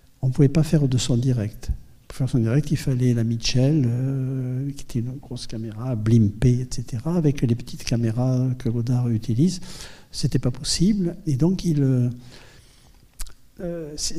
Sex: male